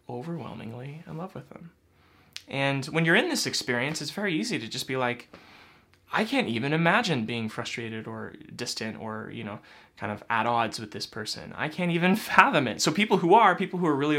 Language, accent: English, American